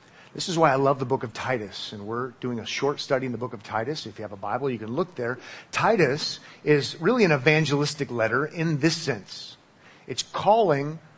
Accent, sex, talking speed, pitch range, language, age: American, male, 215 wpm, 130-165 Hz, English, 40-59